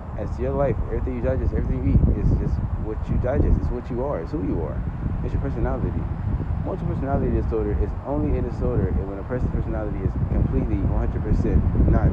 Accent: American